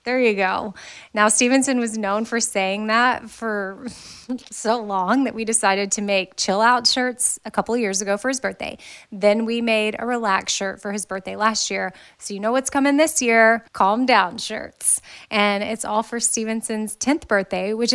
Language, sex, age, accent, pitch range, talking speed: English, female, 20-39, American, 195-235 Hz, 185 wpm